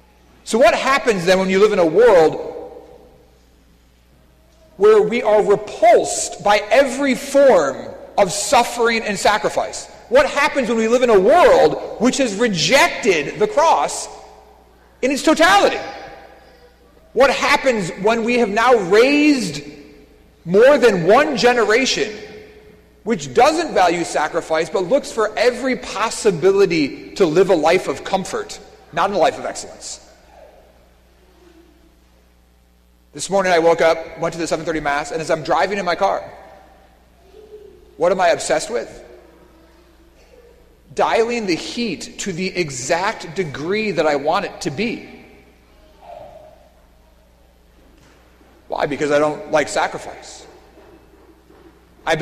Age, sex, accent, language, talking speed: 40-59, male, American, English, 130 wpm